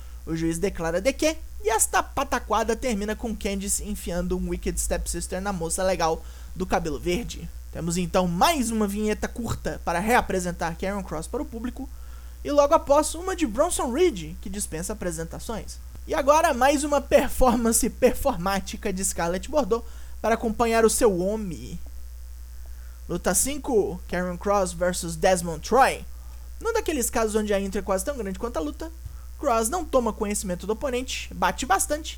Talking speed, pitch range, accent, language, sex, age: 160 wpm, 170-235 Hz, Brazilian, Portuguese, male, 20-39